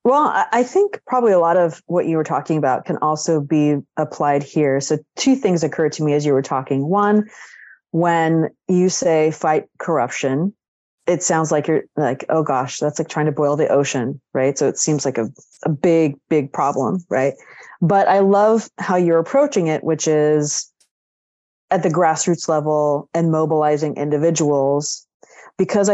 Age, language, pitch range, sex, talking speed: 30-49, English, 150-185 Hz, female, 175 wpm